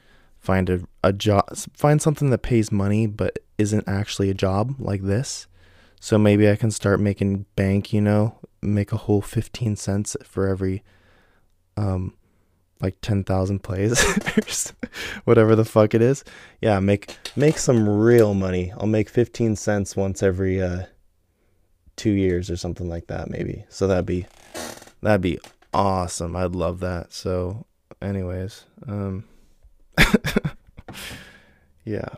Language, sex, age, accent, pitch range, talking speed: English, male, 20-39, American, 90-105 Hz, 140 wpm